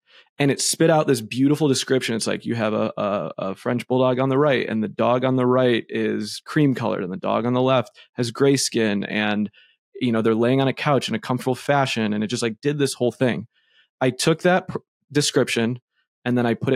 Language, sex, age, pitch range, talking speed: English, male, 20-39, 115-135 Hz, 235 wpm